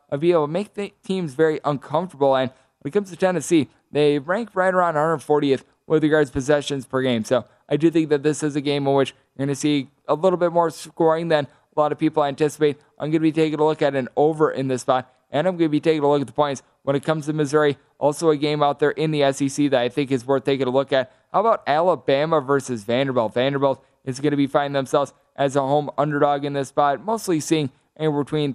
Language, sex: English, male